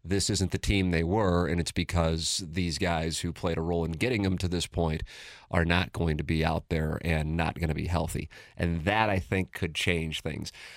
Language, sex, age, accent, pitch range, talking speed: English, male, 40-59, American, 85-100 Hz, 230 wpm